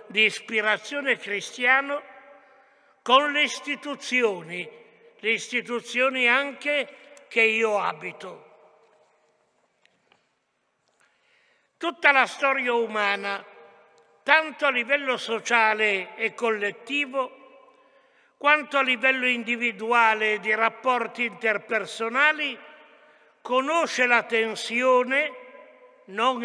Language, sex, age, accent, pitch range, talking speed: Italian, male, 60-79, native, 225-285 Hz, 75 wpm